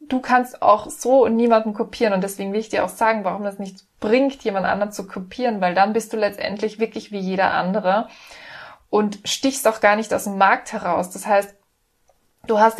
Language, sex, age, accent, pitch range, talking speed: German, female, 20-39, German, 190-225 Hz, 200 wpm